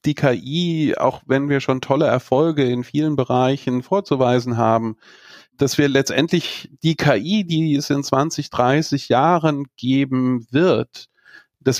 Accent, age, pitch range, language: German, 40-59, 120-150 Hz, English